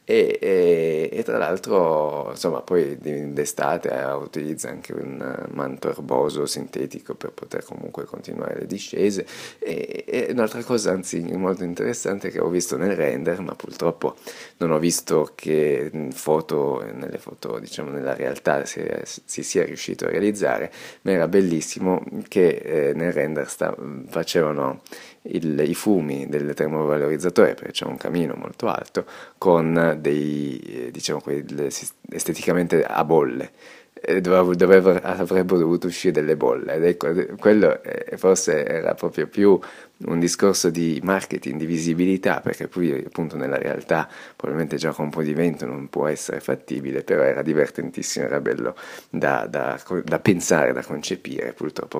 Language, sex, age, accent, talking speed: Italian, male, 30-49, native, 140 wpm